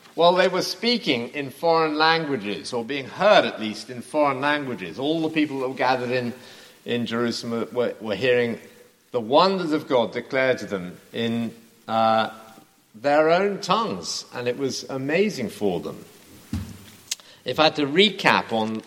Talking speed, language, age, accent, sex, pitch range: 165 wpm, English, 50-69, British, male, 105-140 Hz